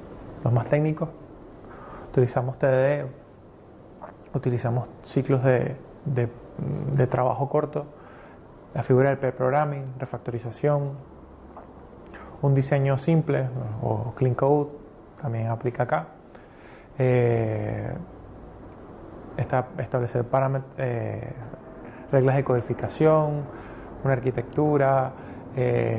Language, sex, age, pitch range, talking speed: Spanish, male, 20-39, 115-140 Hz, 85 wpm